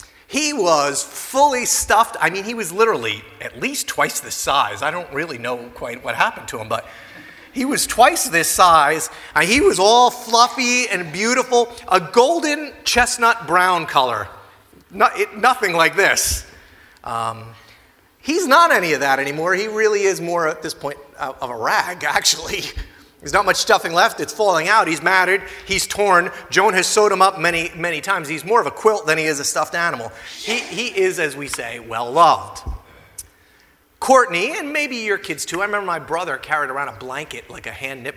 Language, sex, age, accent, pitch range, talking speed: English, male, 30-49, American, 160-245 Hz, 185 wpm